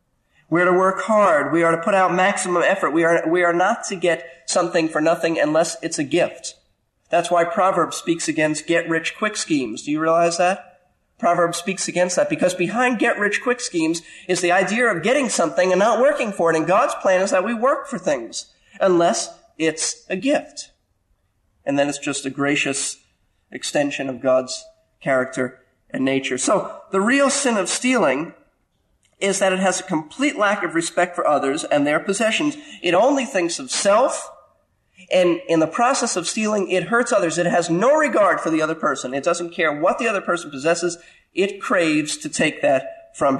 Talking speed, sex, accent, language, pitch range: 190 wpm, male, American, English, 160-215 Hz